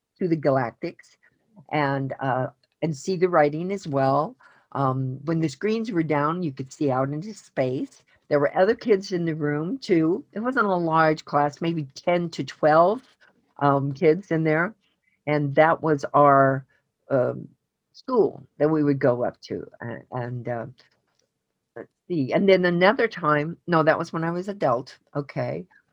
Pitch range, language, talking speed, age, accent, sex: 135-175 Hz, English, 170 wpm, 50-69, American, female